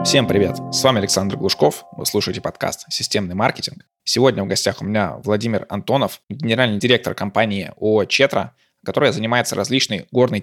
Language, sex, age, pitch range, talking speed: Russian, male, 20-39, 105-130 Hz, 155 wpm